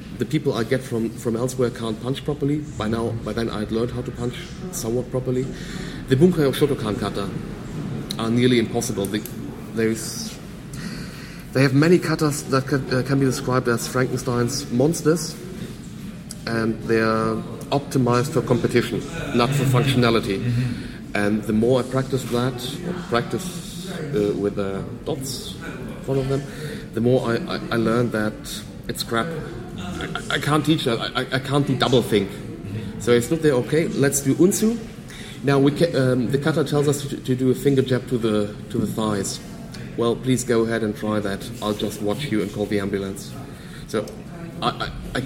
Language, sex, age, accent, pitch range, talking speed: English, male, 40-59, German, 110-140 Hz, 180 wpm